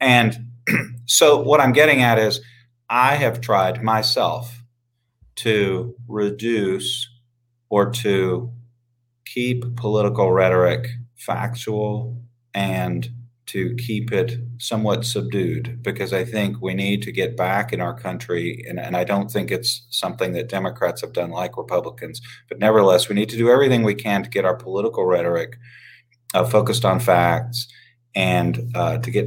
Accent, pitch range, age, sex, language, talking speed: American, 100-120 Hz, 40-59, male, English, 145 wpm